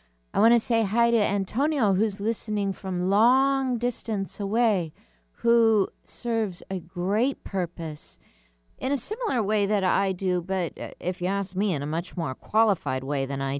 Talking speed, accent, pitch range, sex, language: 170 wpm, American, 165-215 Hz, female, English